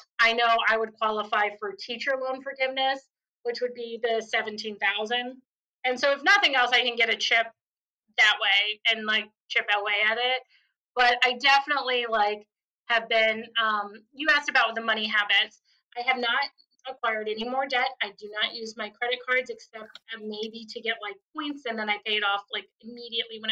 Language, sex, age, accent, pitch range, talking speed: English, female, 30-49, American, 220-255 Hz, 190 wpm